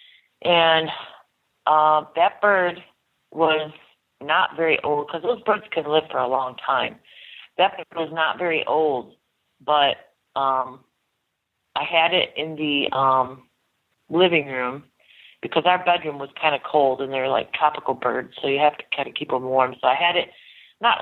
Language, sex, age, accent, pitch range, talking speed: English, female, 40-59, American, 145-175 Hz, 170 wpm